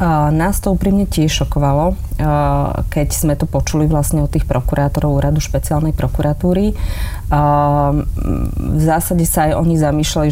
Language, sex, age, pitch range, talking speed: Slovak, female, 30-49, 135-155 Hz, 130 wpm